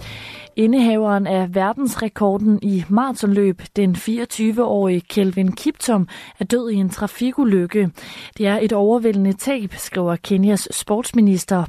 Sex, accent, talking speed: female, native, 115 wpm